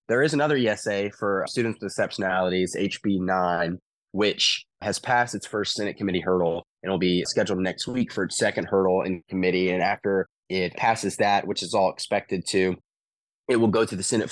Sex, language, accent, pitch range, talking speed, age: male, English, American, 90-100 Hz, 190 wpm, 20-39